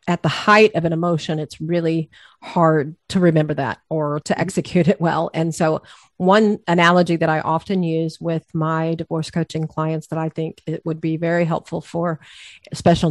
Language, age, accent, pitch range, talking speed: English, 40-59, American, 160-185 Hz, 185 wpm